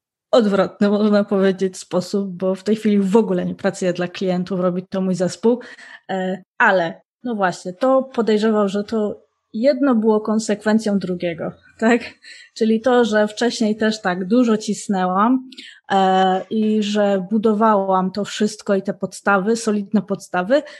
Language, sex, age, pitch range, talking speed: Polish, female, 20-39, 190-230 Hz, 140 wpm